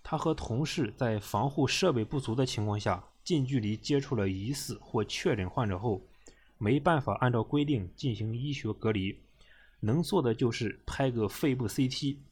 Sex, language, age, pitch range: male, Chinese, 20-39, 105-140 Hz